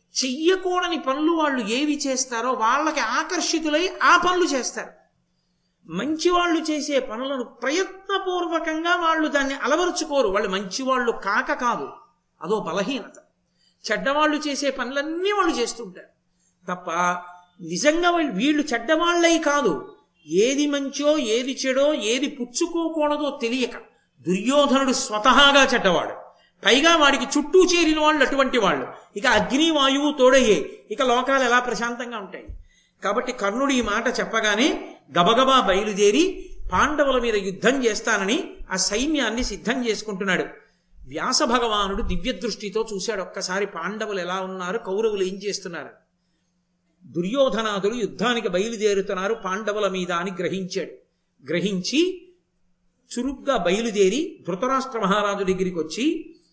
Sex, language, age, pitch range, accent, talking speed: male, Telugu, 50-69, 205-300 Hz, native, 105 wpm